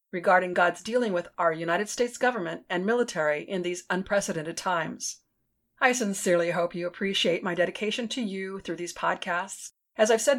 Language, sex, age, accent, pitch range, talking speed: English, female, 40-59, American, 175-230 Hz, 170 wpm